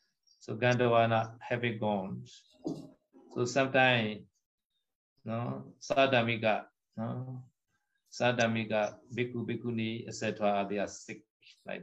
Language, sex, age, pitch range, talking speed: Vietnamese, male, 60-79, 110-140 Hz, 85 wpm